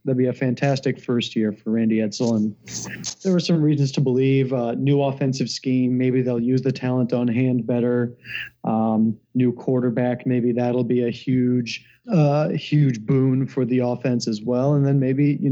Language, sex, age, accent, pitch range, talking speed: English, male, 30-49, American, 125-140 Hz, 185 wpm